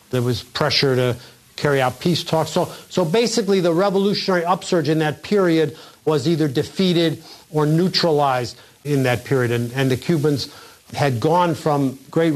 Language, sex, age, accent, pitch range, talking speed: English, male, 50-69, American, 130-160 Hz, 160 wpm